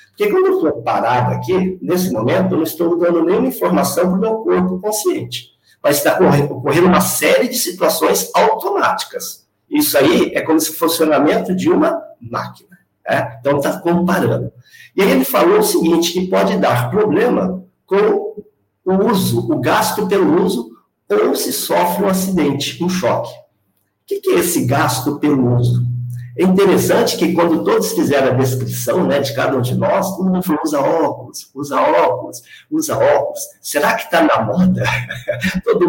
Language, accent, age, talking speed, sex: Portuguese, Brazilian, 50-69, 170 wpm, male